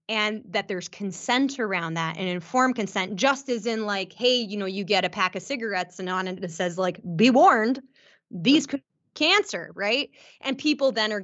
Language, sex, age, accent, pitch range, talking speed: English, female, 20-39, American, 185-240 Hz, 210 wpm